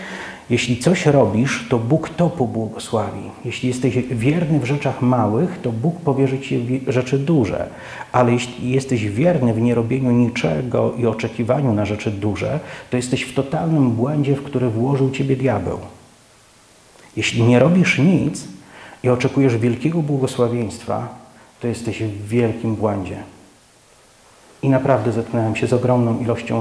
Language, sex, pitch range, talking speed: Polish, male, 110-130 Hz, 140 wpm